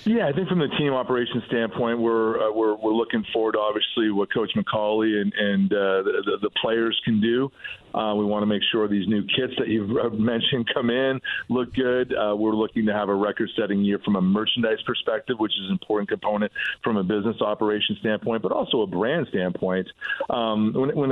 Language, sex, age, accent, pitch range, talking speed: English, male, 40-59, American, 105-115 Hz, 210 wpm